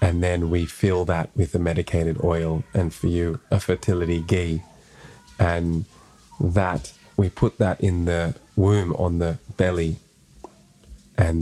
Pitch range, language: 80-95 Hz, English